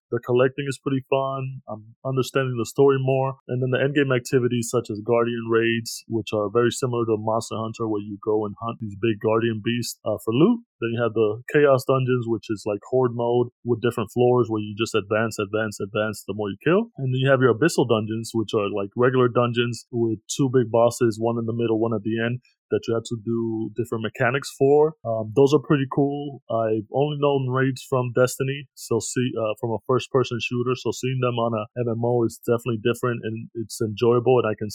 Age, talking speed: 20-39, 220 wpm